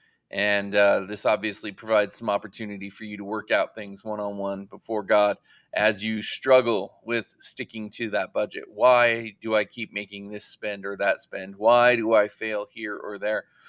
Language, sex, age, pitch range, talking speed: English, male, 30-49, 105-130 Hz, 180 wpm